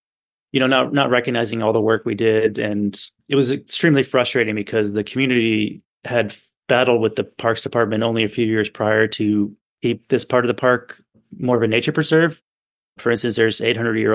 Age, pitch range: 30-49, 110-125 Hz